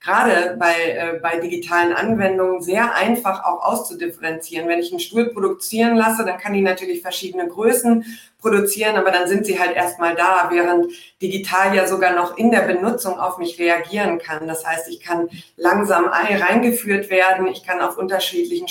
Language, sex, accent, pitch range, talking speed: German, female, German, 175-195 Hz, 170 wpm